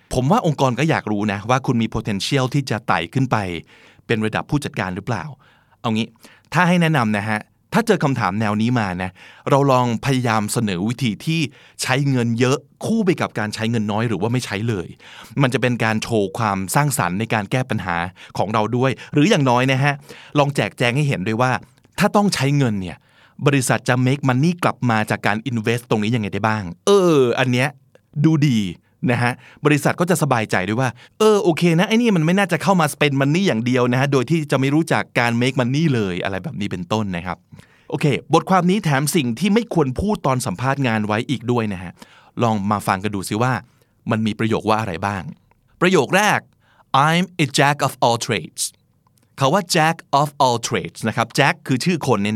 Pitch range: 110-145 Hz